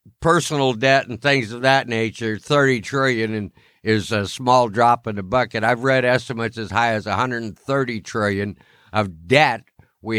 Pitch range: 110-140 Hz